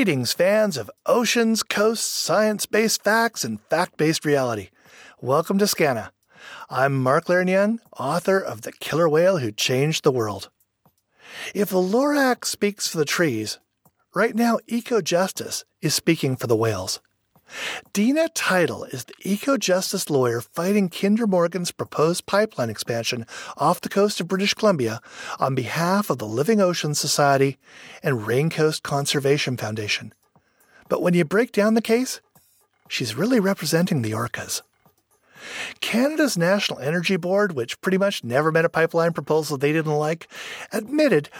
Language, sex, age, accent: English, male, 40-59, American